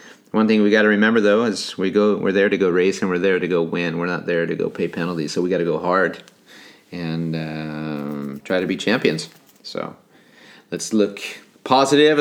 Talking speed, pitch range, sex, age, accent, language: 215 wpm, 85-110 Hz, male, 30-49, American, English